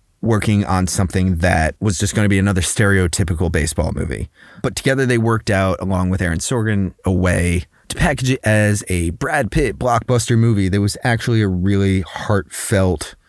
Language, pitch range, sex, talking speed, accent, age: English, 90-110 Hz, male, 175 wpm, American, 30-49